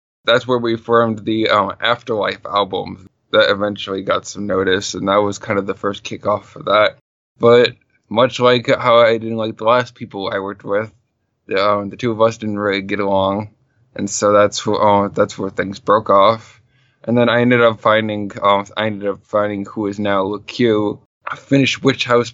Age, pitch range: 10-29, 100-115 Hz